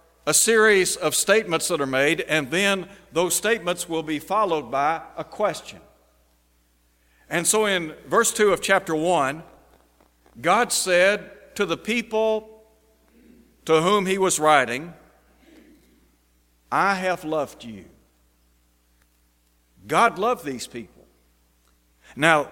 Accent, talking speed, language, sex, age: American, 115 wpm, English, male, 60-79